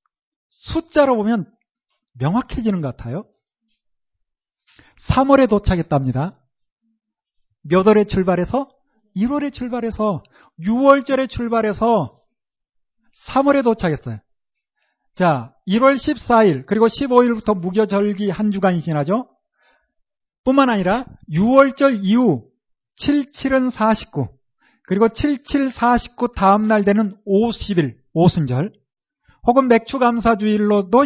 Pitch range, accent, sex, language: 195-260 Hz, native, male, Korean